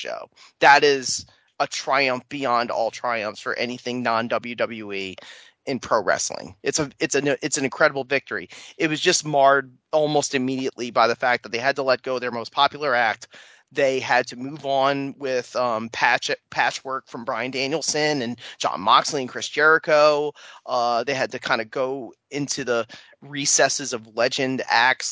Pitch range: 125-150 Hz